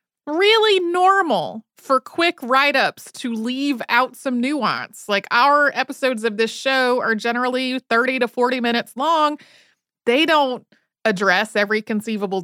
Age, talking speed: 30-49, 135 wpm